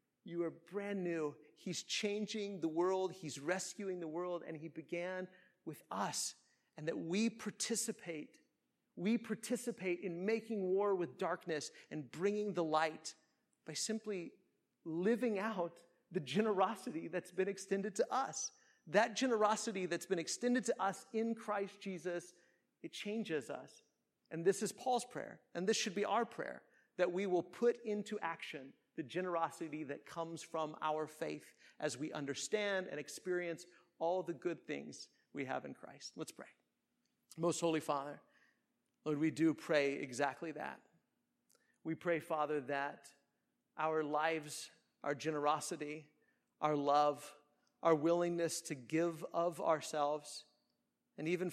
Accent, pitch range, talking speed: American, 155-200 Hz, 140 wpm